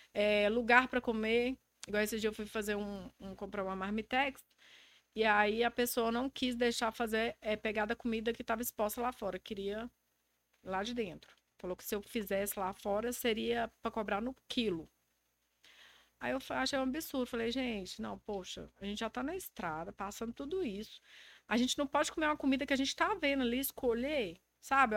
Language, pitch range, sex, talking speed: Portuguese, 210-270 Hz, female, 195 wpm